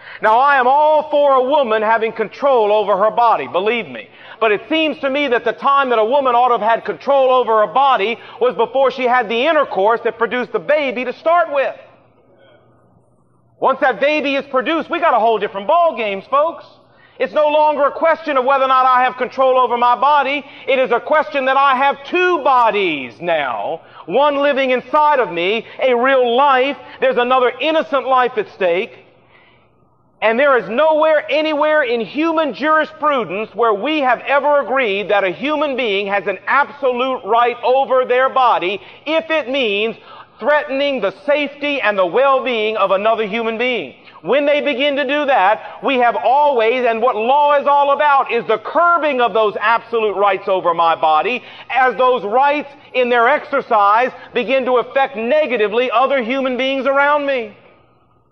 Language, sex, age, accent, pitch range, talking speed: English, male, 40-59, American, 230-290 Hz, 180 wpm